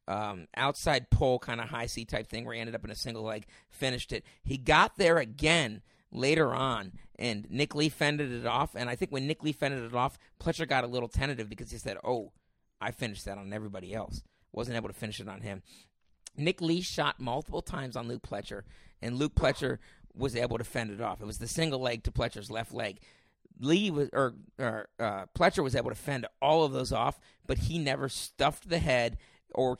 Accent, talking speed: American, 220 wpm